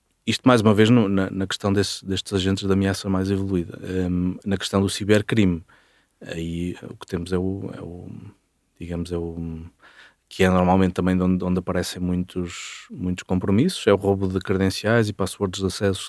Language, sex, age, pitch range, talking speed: Portuguese, male, 20-39, 90-105 Hz, 185 wpm